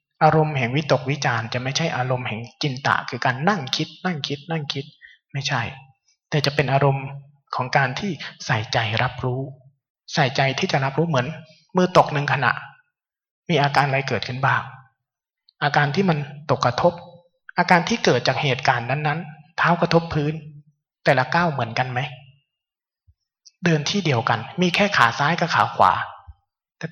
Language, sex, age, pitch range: Thai, male, 20-39, 125-165 Hz